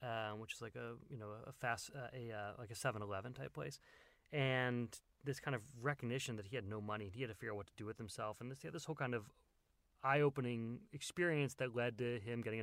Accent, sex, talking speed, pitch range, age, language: American, male, 250 wpm, 115-150 Hz, 30-49, English